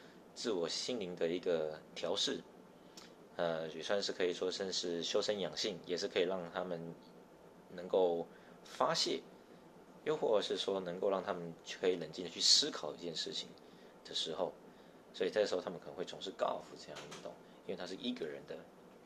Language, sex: Chinese, male